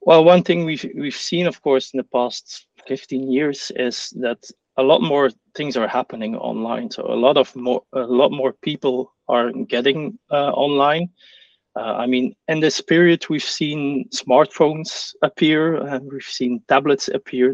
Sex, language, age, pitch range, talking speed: male, English, 30-49, 125-145 Hz, 175 wpm